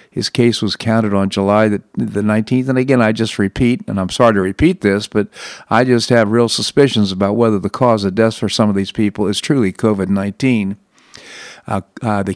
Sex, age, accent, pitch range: male, 50-69, American, 105-125 Hz